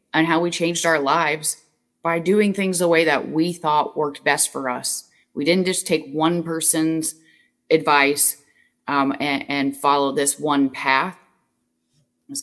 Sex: female